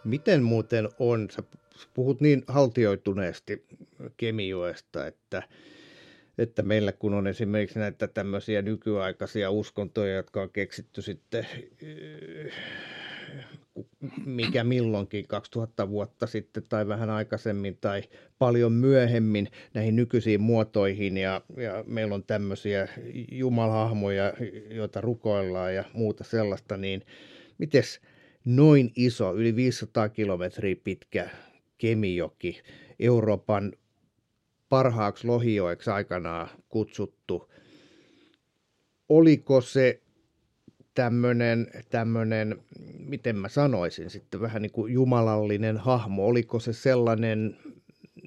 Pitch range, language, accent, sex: 100-120 Hz, Finnish, native, male